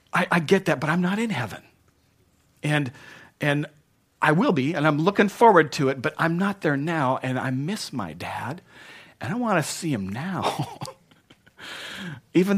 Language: English